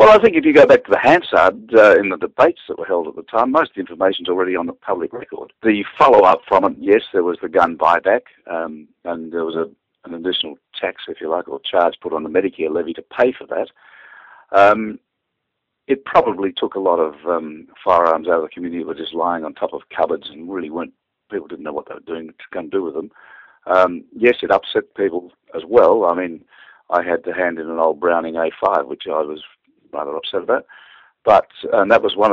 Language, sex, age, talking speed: English, male, 50-69, 230 wpm